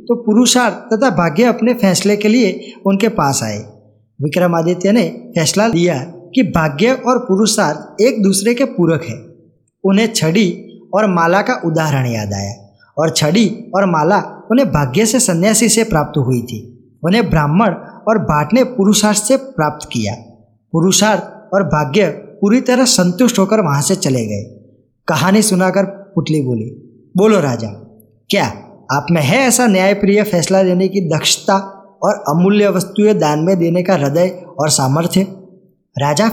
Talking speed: 150 wpm